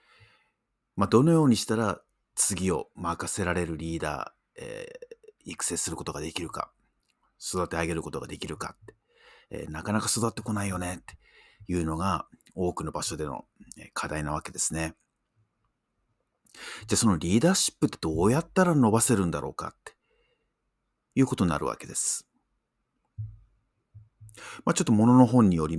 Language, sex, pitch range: Japanese, male, 85-125 Hz